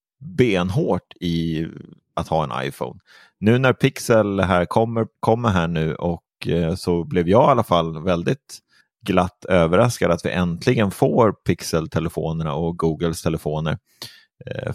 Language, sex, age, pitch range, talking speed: Swedish, male, 30-49, 85-110 Hz, 140 wpm